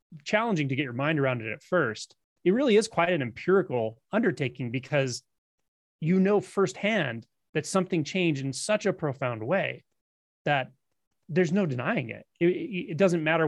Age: 30-49